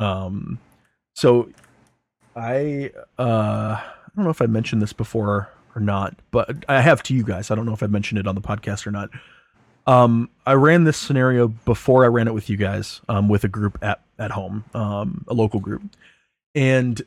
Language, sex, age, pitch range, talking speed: English, male, 30-49, 105-125 Hz, 200 wpm